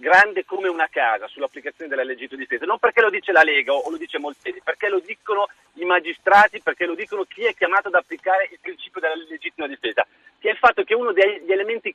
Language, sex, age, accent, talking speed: Italian, male, 40-59, native, 220 wpm